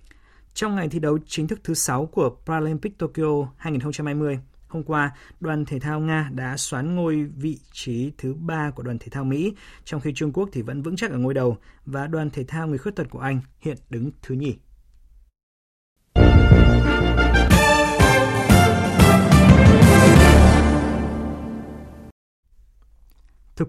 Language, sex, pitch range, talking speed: Vietnamese, male, 120-155 Hz, 140 wpm